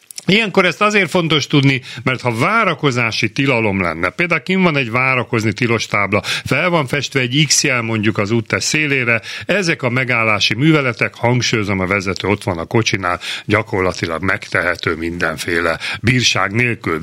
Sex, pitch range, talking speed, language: male, 105-135 Hz, 145 wpm, Hungarian